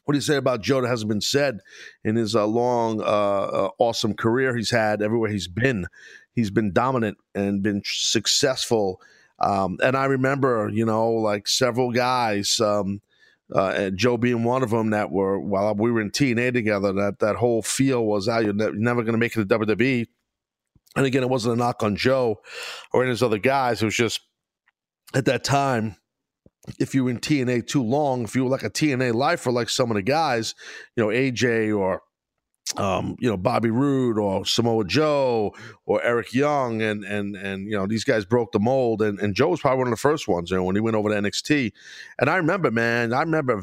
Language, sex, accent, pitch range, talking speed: English, male, American, 105-130 Hz, 215 wpm